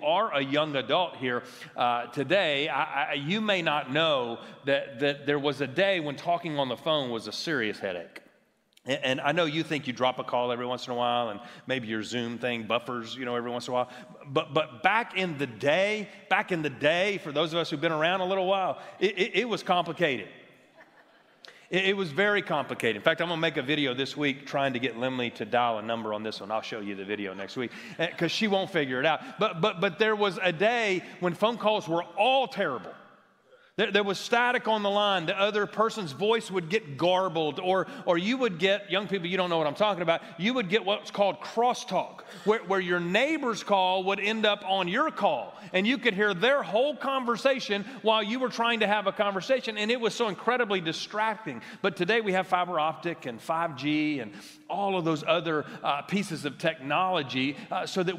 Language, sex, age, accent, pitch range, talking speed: English, male, 30-49, American, 145-205 Hz, 225 wpm